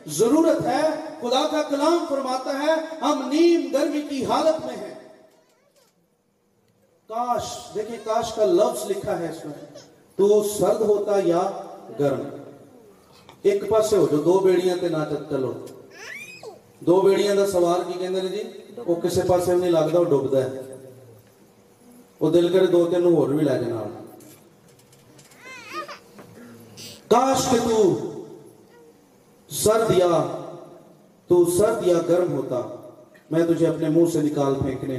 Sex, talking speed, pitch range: male, 80 wpm, 170-245 Hz